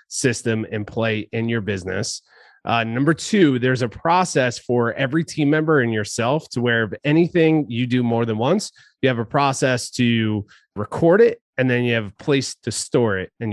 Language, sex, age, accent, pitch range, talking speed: English, male, 30-49, American, 105-145 Hz, 195 wpm